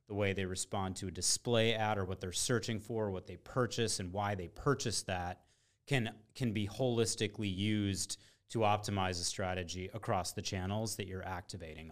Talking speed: 180 wpm